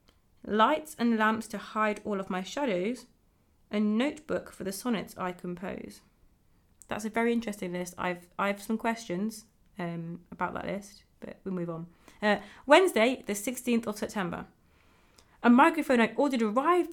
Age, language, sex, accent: 30-49, English, female, British